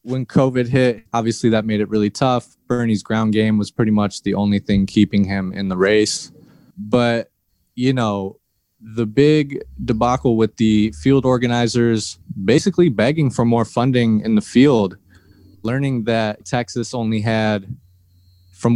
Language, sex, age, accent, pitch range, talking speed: English, male, 20-39, American, 100-120 Hz, 150 wpm